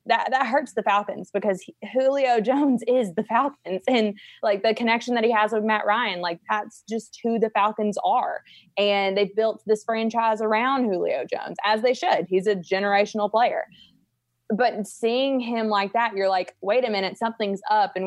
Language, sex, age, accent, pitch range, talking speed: English, female, 20-39, American, 195-240 Hz, 190 wpm